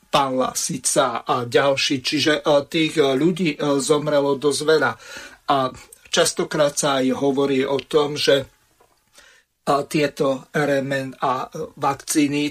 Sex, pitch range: male, 135-150 Hz